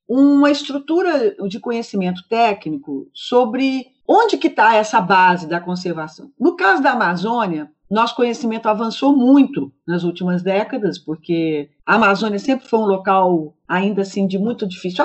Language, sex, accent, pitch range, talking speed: Portuguese, female, Brazilian, 185-265 Hz, 140 wpm